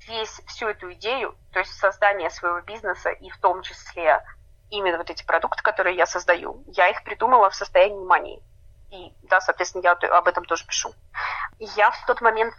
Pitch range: 175-210 Hz